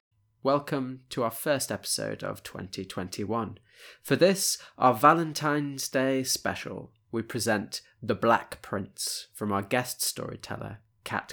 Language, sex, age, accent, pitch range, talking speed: English, male, 20-39, British, 105-130 Hz, 120 wpm